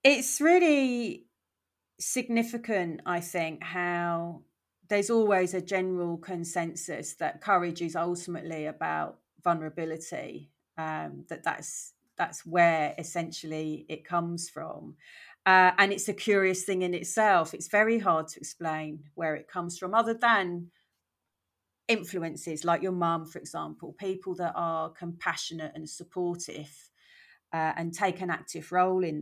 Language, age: English, 30-49